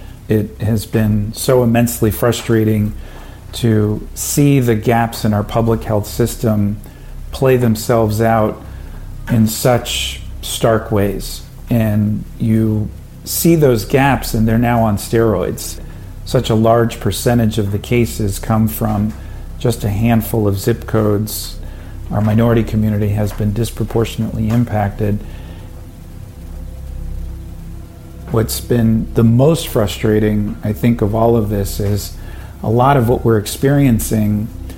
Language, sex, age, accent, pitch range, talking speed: English, male, 50-69, American, 105-120 Hz, 125 wpm